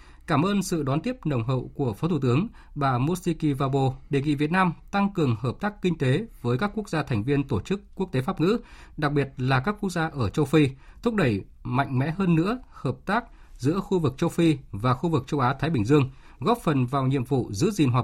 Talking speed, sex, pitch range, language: 245 wpm, male, 130-165 Hz, Vietnamese